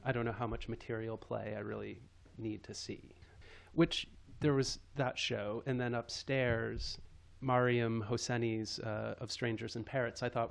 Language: English